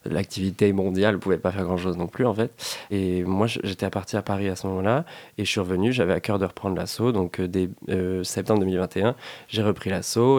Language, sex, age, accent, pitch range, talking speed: French, male, 20-39, French, 95-110 Hz, 230 wpm